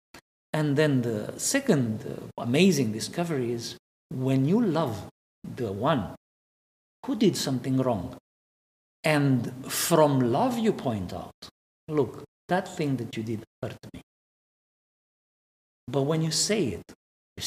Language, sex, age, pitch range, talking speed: English, male, 50-69, 115-165 Hz, 125 wpm